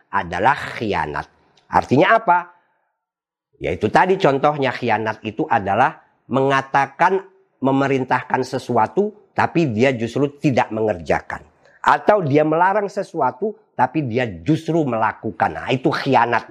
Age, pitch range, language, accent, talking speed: 50-69, 120-160 Hz, Indonesian, native, 105 wpm